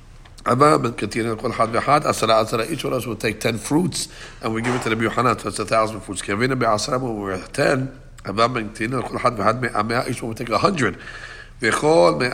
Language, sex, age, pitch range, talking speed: English, male, 60-79, 110-135 Hz, 130 wpm